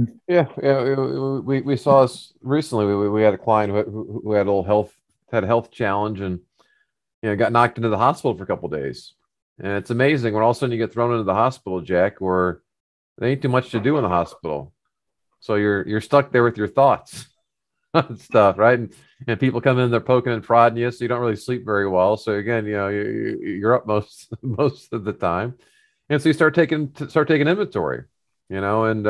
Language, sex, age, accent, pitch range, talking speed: English, male, 40-59, American, 105-130 Hz, 225 wpm